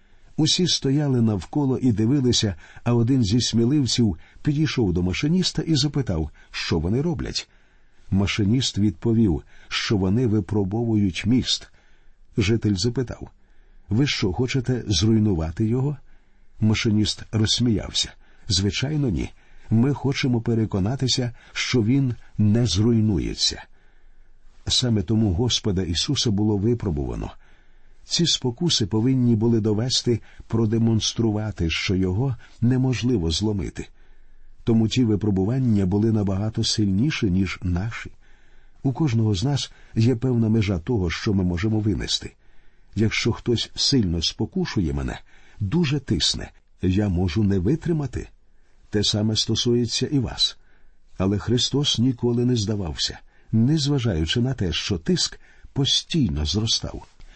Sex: male